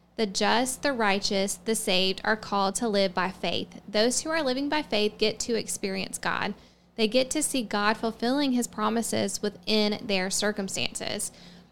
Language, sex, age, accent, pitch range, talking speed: English, female, 10-29, American, 200-245 Hz, 170 wpm